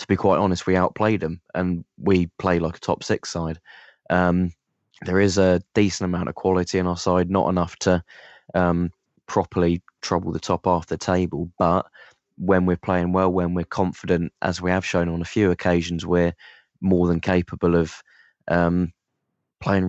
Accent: British